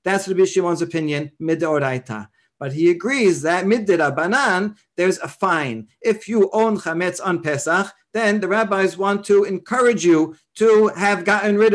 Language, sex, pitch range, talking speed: English, male, 155-200 Hz, 155 wpm